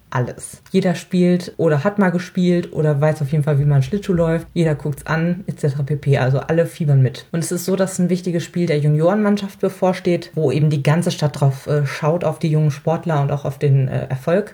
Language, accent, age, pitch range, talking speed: German, German, 30-49, 150-175 Hz, 215 wpm